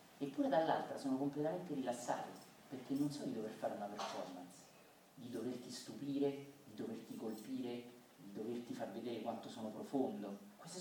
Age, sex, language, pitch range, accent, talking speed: 40-59, male, Italian, 130-185 Hz, native, 150 wpm